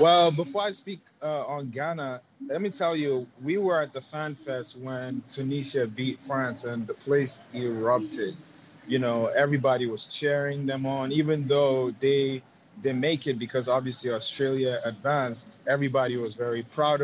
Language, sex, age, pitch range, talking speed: English, male, 30-49, 125-155 Hz, 160 wpm